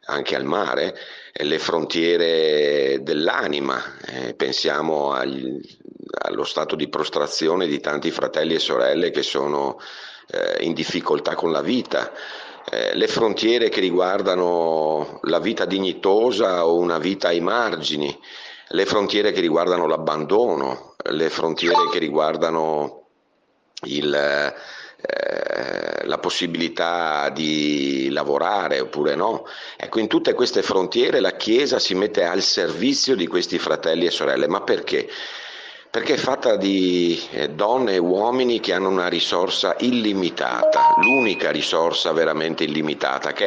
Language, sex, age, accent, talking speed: Italian, male, 50-69, native, 120 wpm